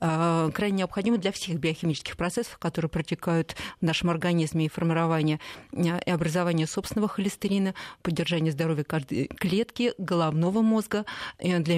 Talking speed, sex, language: 120 wpm, female, Russian